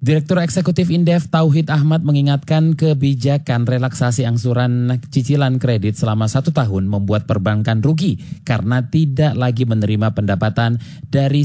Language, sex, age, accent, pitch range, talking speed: Indonesian, male, 20-39, native, 115-150 Hz, 120 wpm